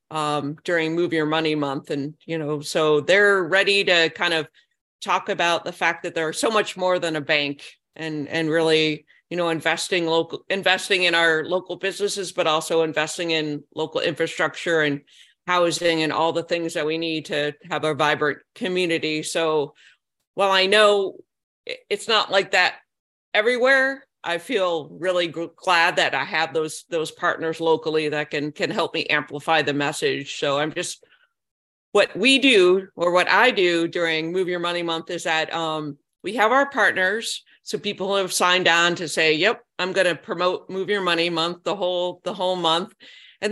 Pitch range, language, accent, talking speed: 155-195 Hz, English, American, 180 wpm